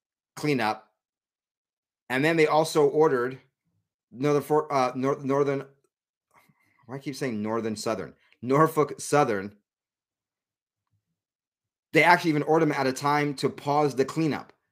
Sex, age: male, 30-49